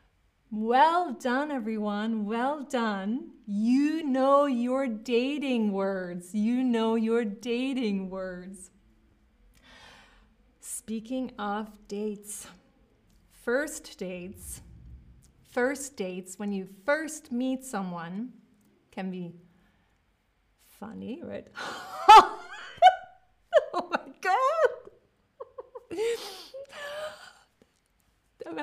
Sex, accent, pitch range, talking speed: female, American, 195-280 Hz, 75 wpm